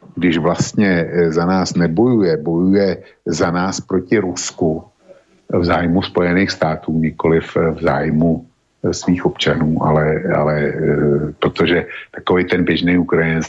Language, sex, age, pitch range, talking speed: Slovak, male, 50-69, 80-90 Hz, 115 wpm